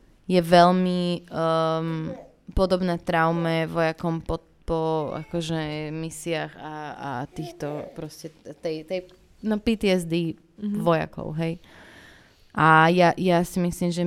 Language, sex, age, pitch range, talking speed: Slovak, female, 20-39, 160-185 Hz, 105 wpm